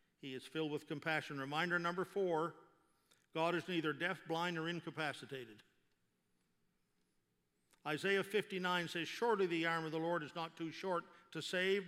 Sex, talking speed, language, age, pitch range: male, 150 wpm, English, 50-69, 150-180 Hz